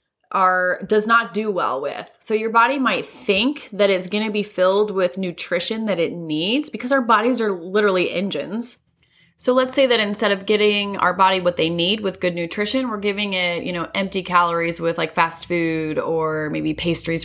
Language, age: English, 20-39